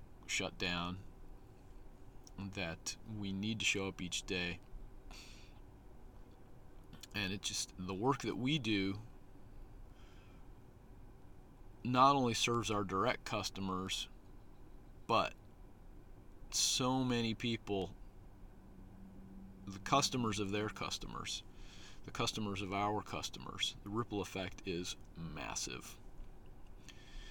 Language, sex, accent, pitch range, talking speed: English, male, American, 95-120 Hz, 95 wpm